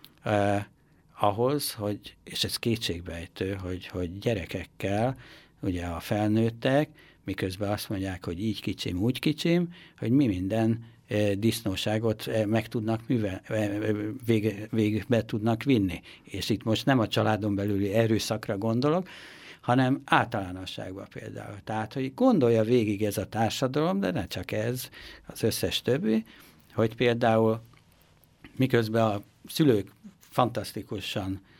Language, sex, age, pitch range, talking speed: Hungarian, male, 60-79, 95-120 Hz, 115 wpm